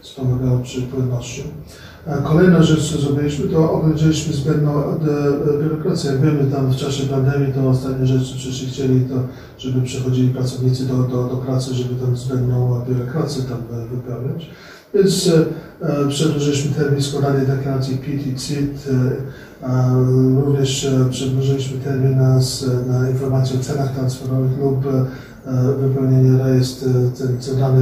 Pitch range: 130-140 Hz